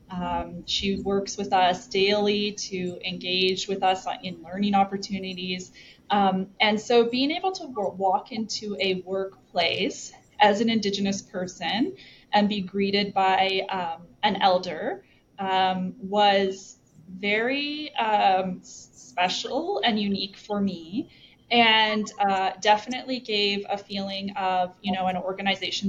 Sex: female